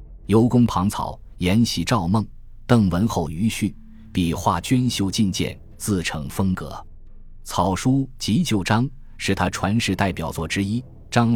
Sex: male